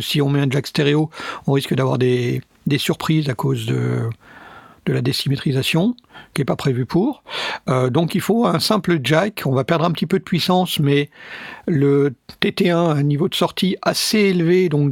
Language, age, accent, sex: French, 50-69, French, male